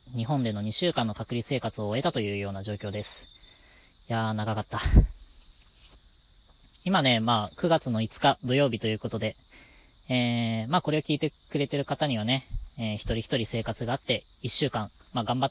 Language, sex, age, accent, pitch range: Japanese, female, 20-39, native, 105-130 Hz